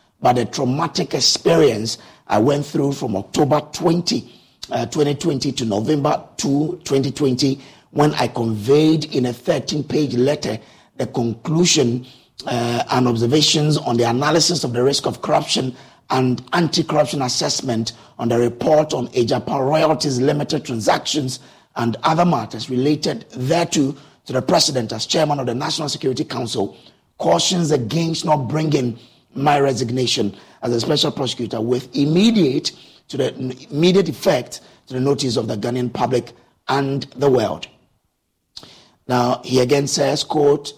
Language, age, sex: English, 50-69, male